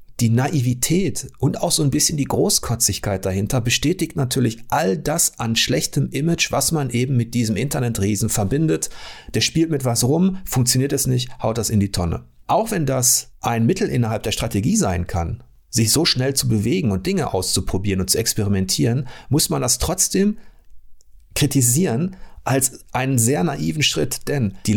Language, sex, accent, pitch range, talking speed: German, male, German, 105-145 Hz, 170 wpm